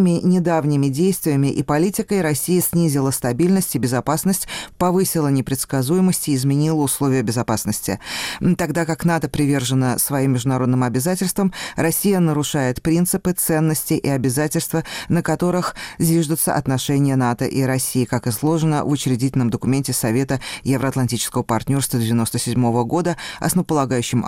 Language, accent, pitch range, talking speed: Russian, native, 125-160 Hz, 115 wpm